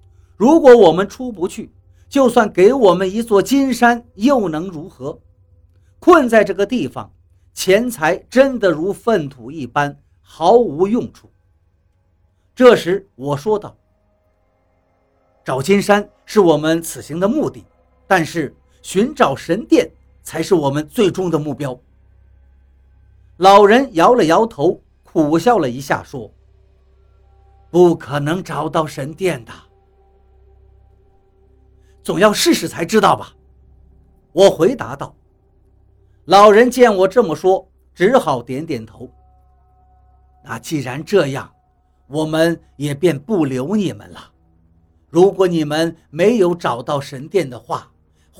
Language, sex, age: Chinese, male, 50-69